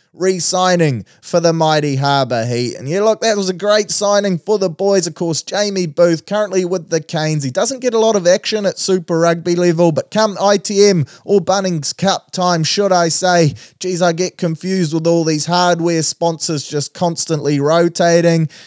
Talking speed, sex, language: 185 wpm, male, English